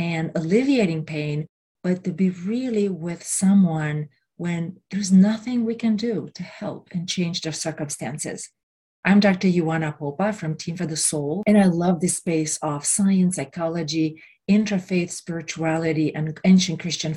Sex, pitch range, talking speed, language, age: female, 160-195 Hz, 150 wpm, English, 40-59